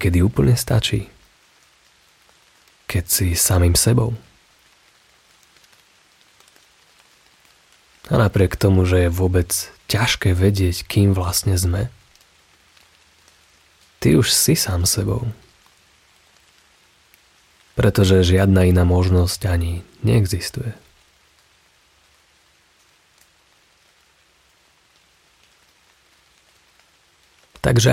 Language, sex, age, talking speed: Slovak, male, 30-49, 65 wpm